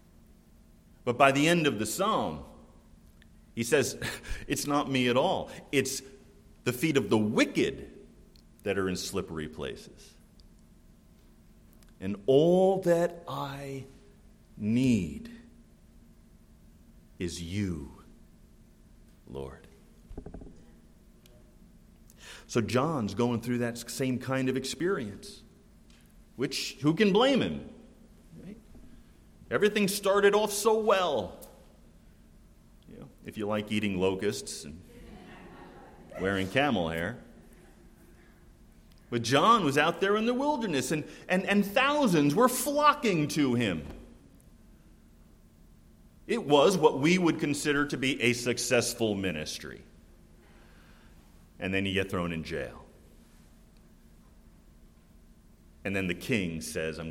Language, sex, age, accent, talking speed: English, male, 50-69, American, 110 wpm